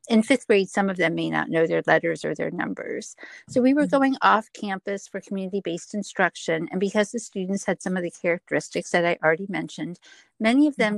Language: English